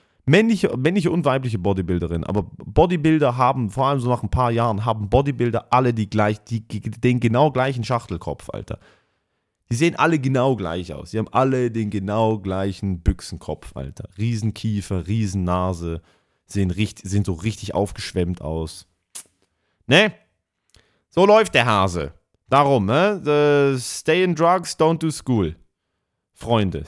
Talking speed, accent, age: 145 wpm, German, 30-49